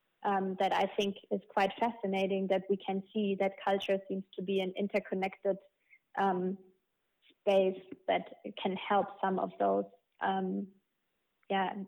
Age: 20-39